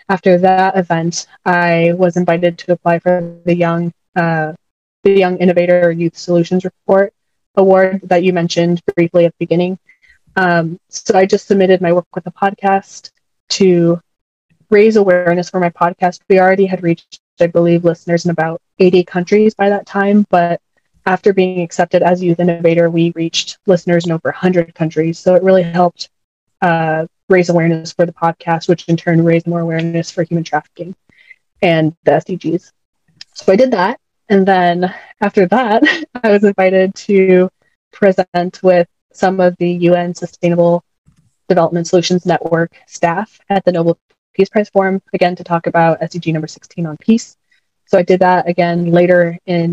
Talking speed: 165 wpm